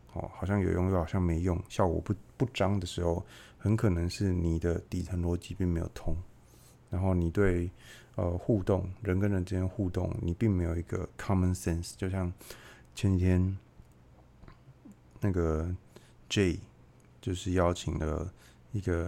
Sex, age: male, 20-39